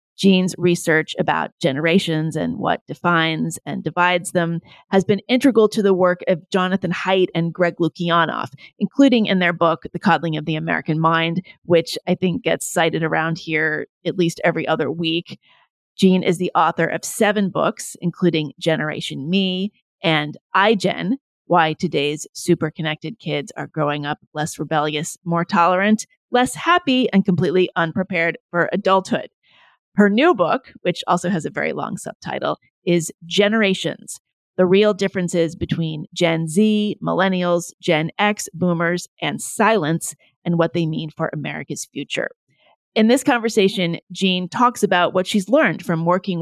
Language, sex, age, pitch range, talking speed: English, female, 30-49, 165-195 Hz, 150 wpm